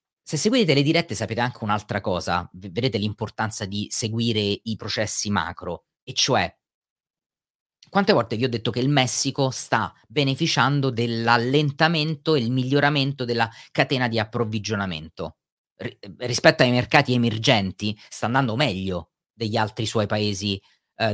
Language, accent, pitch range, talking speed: Italian, native, 105-140 Hz, 135 wpm